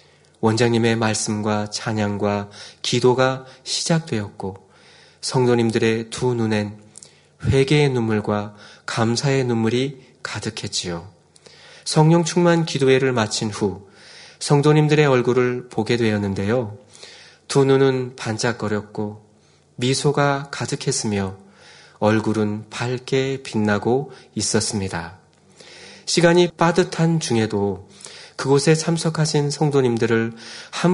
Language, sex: Korean, male